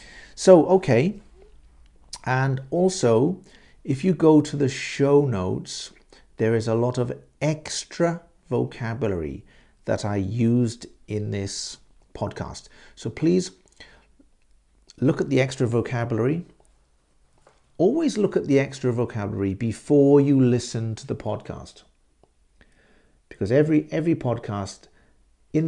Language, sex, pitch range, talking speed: English, male, 100-135 Hz, 110 wpm